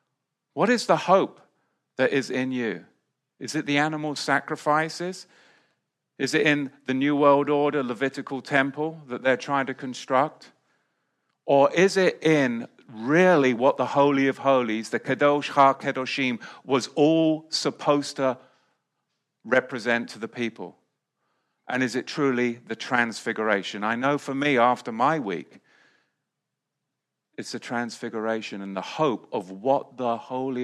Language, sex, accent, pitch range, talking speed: English, male, British, 120-145 Hz, 140 wpm